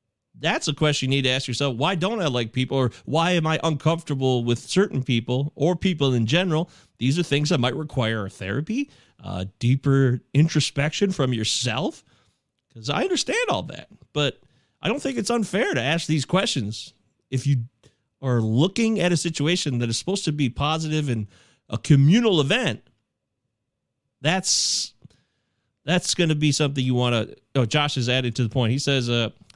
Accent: American